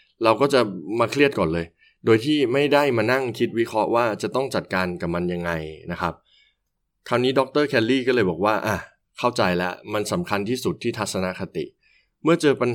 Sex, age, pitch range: male, 20-39, 85-115 Hz